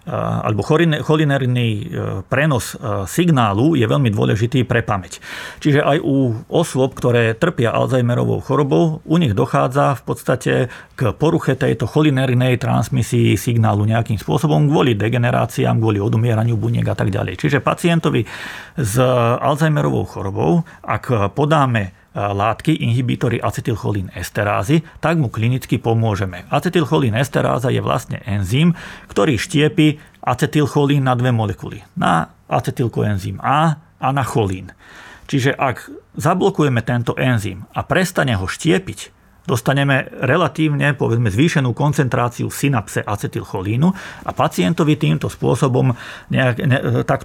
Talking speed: 115 wpm